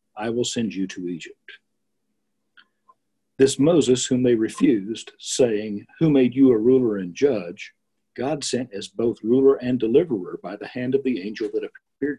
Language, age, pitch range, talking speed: English, 50-69, 115-145 Hz, 165 wpm